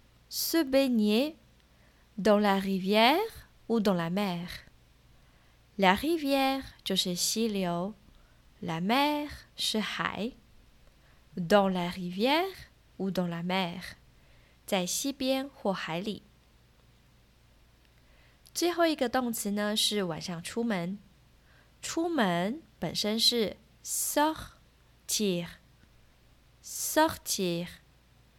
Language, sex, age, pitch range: Chinese, female, 20-39, 180-250 Hz